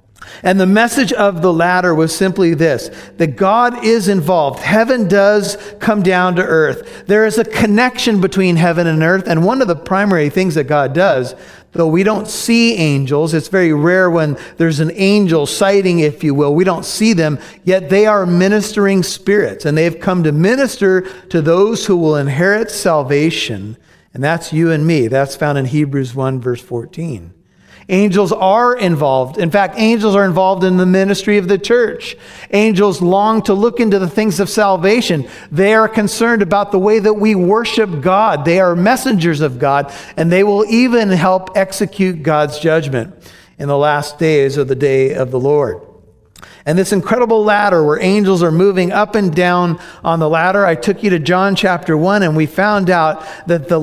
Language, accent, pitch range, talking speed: English, American, 155-200 Hz, 185 wpm